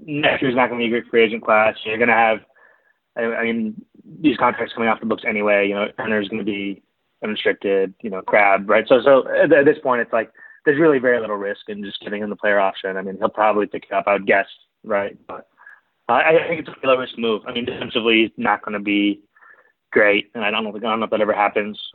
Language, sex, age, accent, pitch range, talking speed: English, male, 20-39, American, 100-120 Hz, 255 wpm